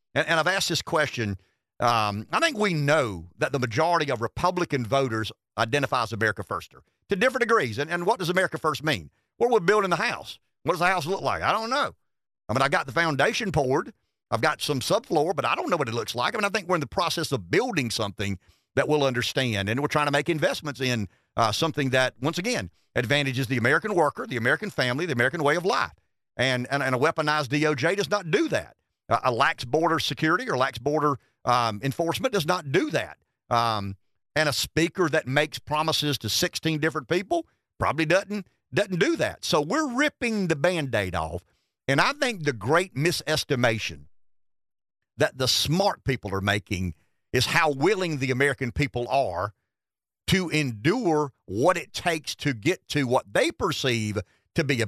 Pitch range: 115-170 Hz